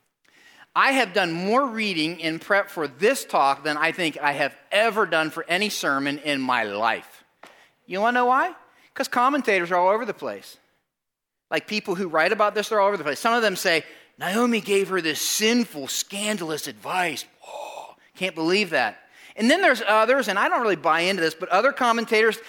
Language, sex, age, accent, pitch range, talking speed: English, male, 30-49, American, 175-265 Hz, 200 wpm